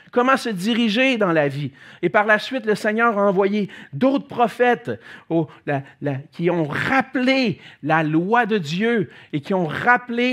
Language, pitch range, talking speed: French, 150-215 Hz, 155 wpm